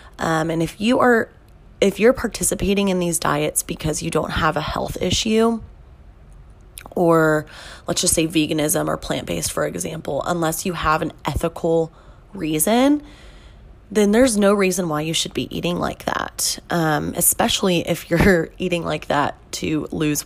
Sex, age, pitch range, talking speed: female, 20-39, 155-185 Hz, 155 wpm